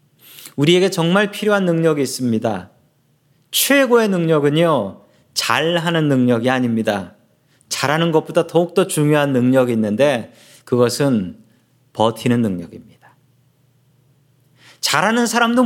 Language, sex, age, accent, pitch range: Korean, male, 40-59, native, 135-185 Hz